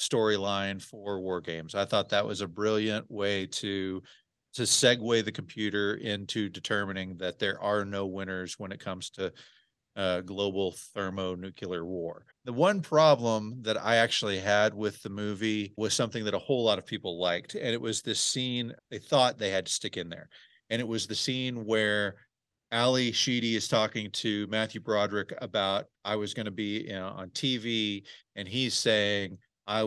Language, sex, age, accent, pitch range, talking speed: English, male, 40-59, American, 100-115 Hz, 175 wpm